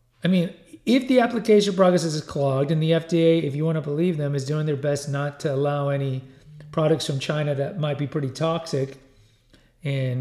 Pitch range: 135-170 Hz